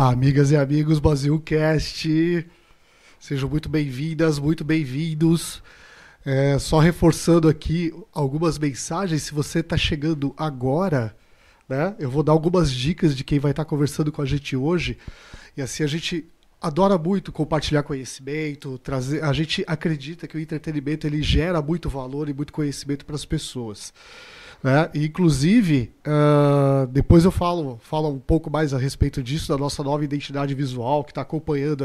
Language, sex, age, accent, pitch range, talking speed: Portuguese, male, 20-39, Brazilian, 140-165 Hz, 155 wpm